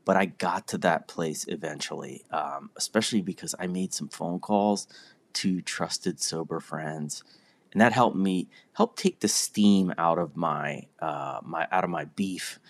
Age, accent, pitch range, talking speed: 30-49, American, 85-105 Hz, 170 wpm